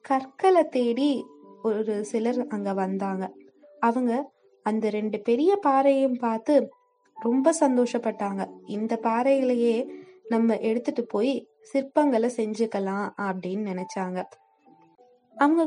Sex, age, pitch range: female, 20-39, 215-275 Hz